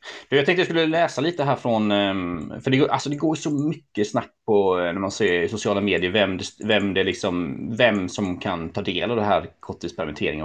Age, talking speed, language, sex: 30-49, 225 wpm, Swedish, male